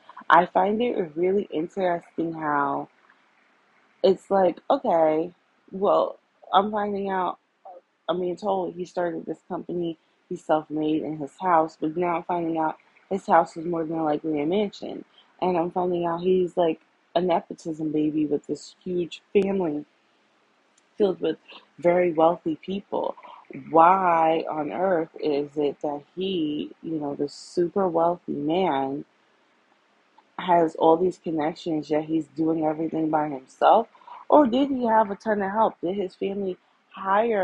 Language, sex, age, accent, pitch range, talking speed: English, female, 20-39, American, 160-195 Hz, 145 wpm